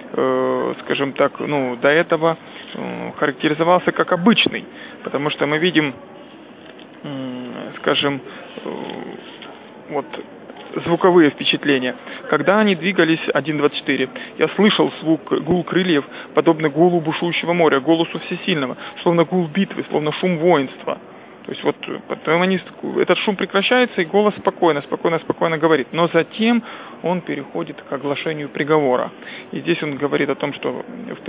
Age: 20-39